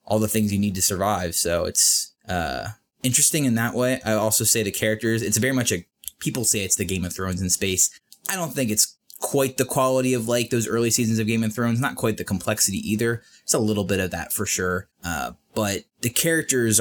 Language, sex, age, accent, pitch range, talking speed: English, male, 20-39, American, 100-130 Hz, 230 wpm